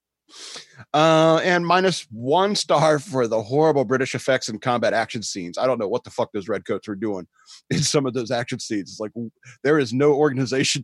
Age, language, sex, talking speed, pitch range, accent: 40-59, English, male, 205 wpm, 125-165 Hz, American